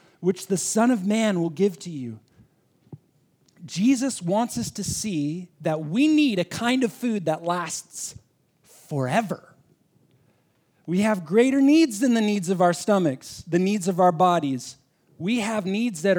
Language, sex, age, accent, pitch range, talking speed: English, male, 40-59, American, 140-205 Hz, 160 wpm